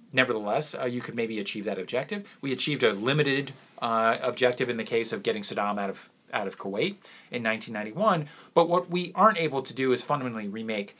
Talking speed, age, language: 200 wpm, 30-49, English